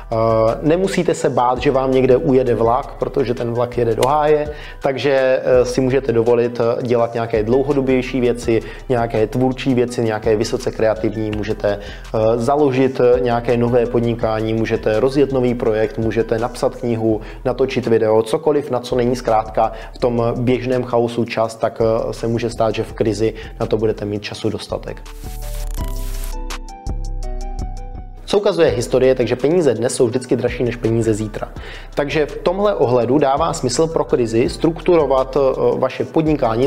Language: Czech